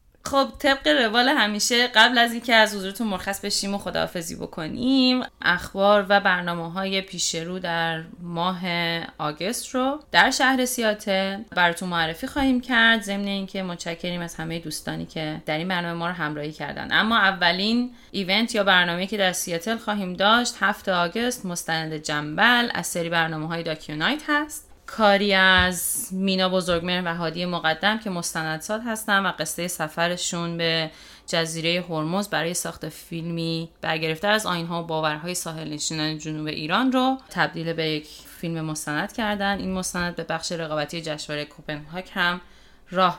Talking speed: 155 wpm